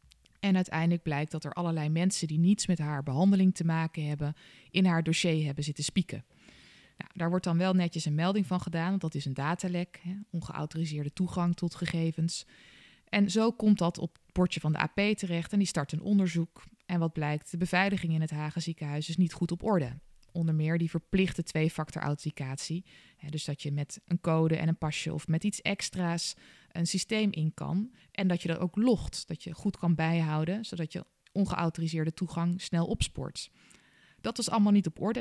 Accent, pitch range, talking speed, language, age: Dutch, 160-190 Hz, 200 wpm, Dutch, 20-39